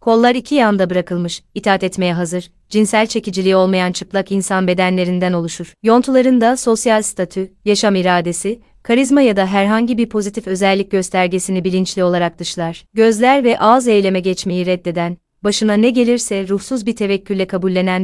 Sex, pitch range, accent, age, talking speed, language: female, 185-220 Hz, native, 30-49, 145 wpm, Turkish